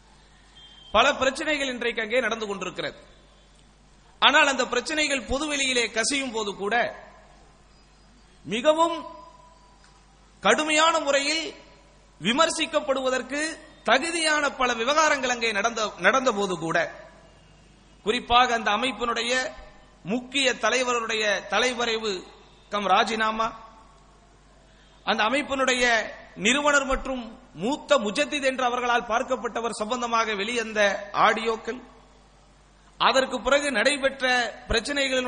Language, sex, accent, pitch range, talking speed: English, male, Indian, 220-270 Hz, 80 wpm